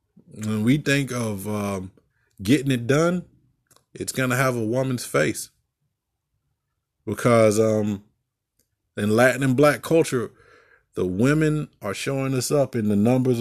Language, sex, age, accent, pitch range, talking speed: English, male, 20-39, American, 110-145 Hz, 140 wpm